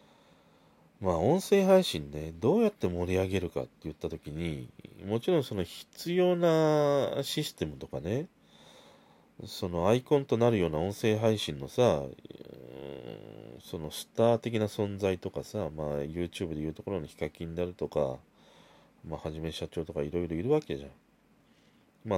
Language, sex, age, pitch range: Japanese, male, 40-59, 80-115 Hz